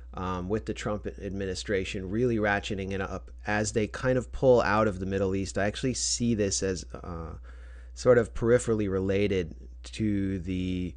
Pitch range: 90-105 Hz